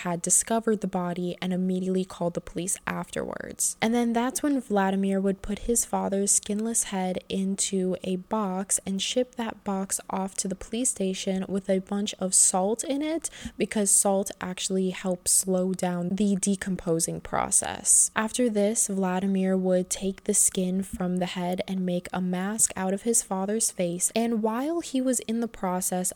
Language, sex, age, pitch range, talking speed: English, female, 10-29, 180-215 Hz, 170 wpm